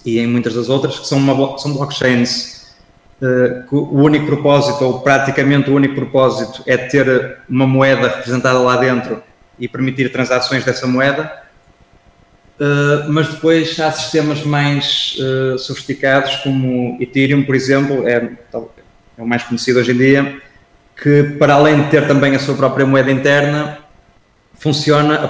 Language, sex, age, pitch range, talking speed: Portuguese, male, 20-39, 125-145 Hz, 145 wpm